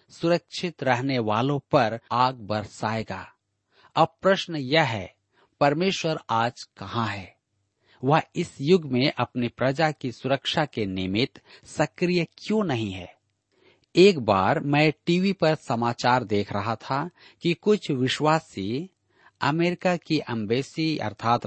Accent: native